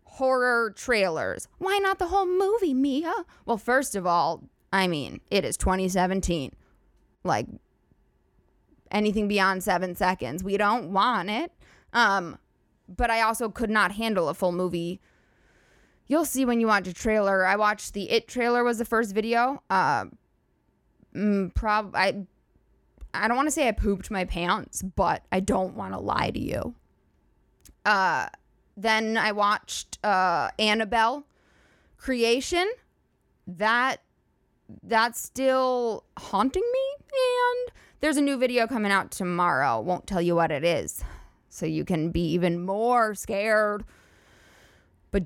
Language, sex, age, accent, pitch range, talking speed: English, female, 20-39, American, 175-235 Hz, 140 wpm